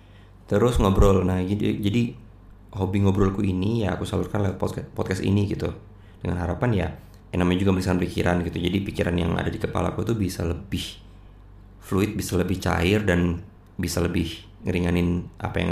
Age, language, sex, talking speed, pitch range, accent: 20-39, Indonesian, male, 160 wpm, 90-105 Hz, native